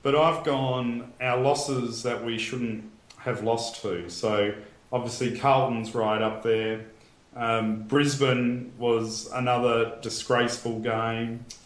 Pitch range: 110-125 Hz